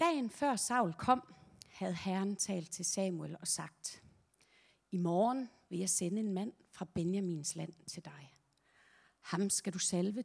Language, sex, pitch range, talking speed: Danish, female, 170-230 Hz, 160 wpm